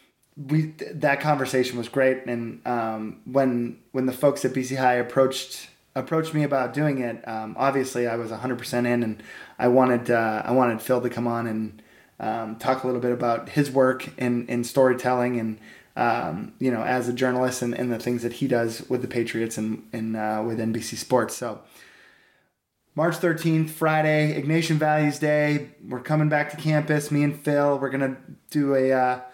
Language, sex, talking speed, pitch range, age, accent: English, male, 190 wpm, 125-150 Hz, 20-39, American